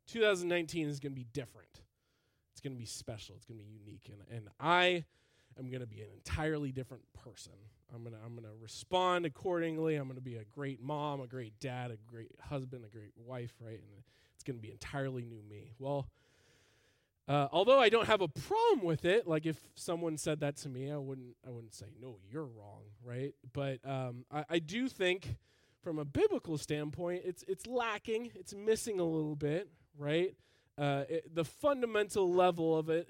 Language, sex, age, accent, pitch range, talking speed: English, male, 20-39, American, 120-175 Hz, 200 wpm